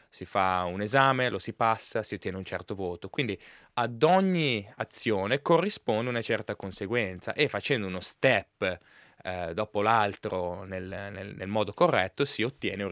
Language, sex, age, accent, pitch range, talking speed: Italian, male, 20-39, native, 95-125 Hz, 165 wpm